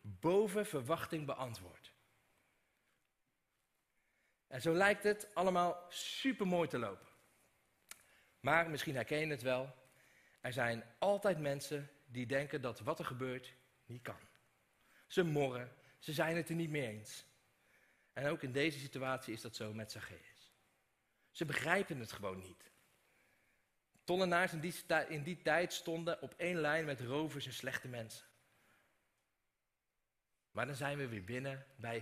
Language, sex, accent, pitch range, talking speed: Dutch, male, Dutch, 120-160 Hz, 140 wpm